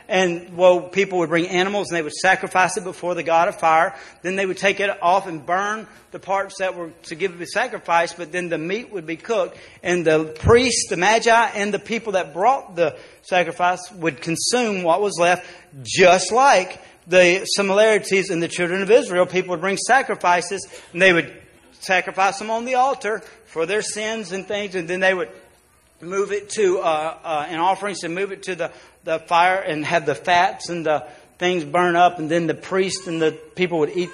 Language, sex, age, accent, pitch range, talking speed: English, male, 40-59, American, 170-205 Hz, 205 wpm